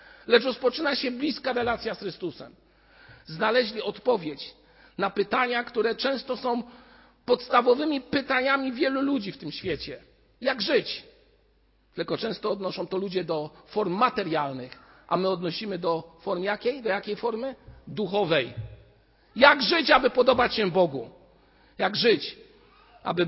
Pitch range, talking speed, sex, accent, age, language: 165-240 Hz, 130 wpm, male, native, 50-69, Polish